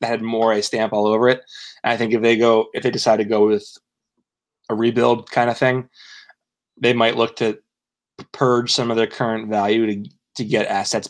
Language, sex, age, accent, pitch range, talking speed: English, male, 20-39, American, 105-130 Hz, 205 wpm